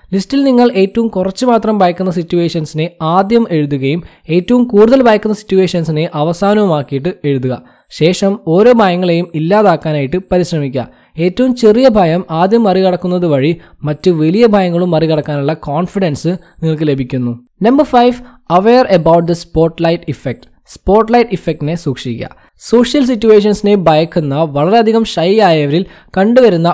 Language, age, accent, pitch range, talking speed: Malayalam, 20-39, native, 160-210 Hz, 110 wpm